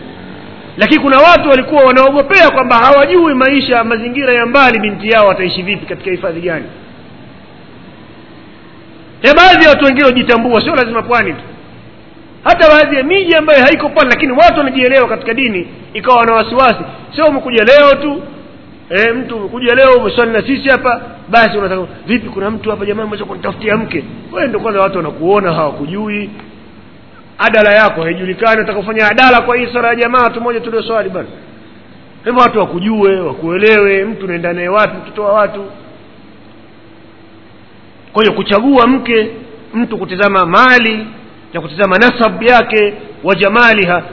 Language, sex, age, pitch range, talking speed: Swahili, male, 40-59, 180-245 Hz, 145 wpm